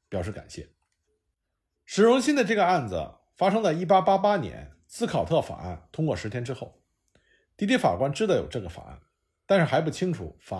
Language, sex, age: Chinese, male, 50-69